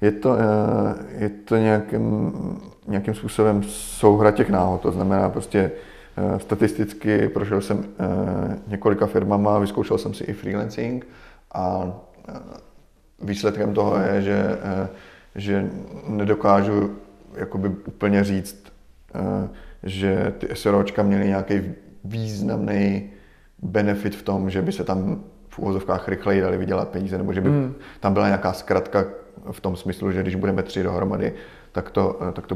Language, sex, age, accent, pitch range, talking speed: Czech, male, 30-49, native, 95-105 Hz, 130 wpm